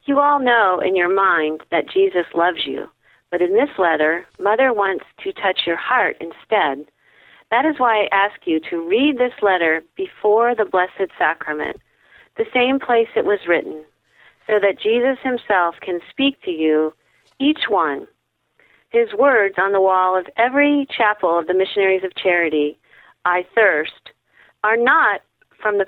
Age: 40-59